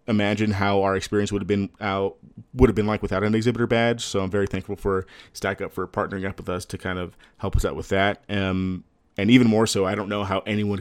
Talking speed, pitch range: 255 wpm, 90-105 Hz